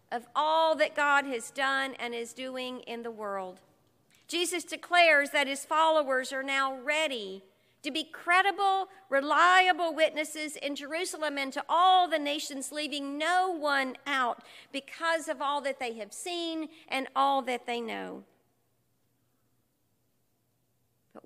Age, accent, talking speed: 50-69, American, 140 wpm